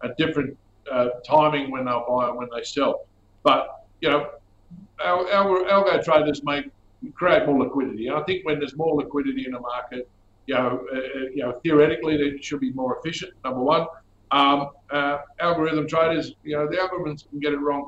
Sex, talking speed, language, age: male, 190 wpm, English, 50-69